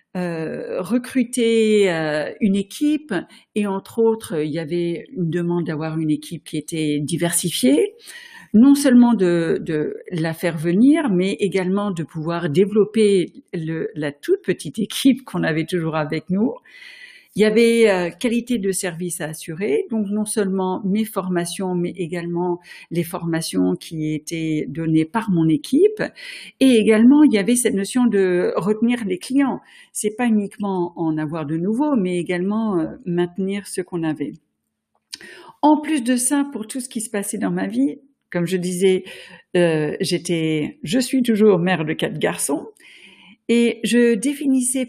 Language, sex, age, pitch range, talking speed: French, female, 50-69, 175-245 Hz, 155 wpm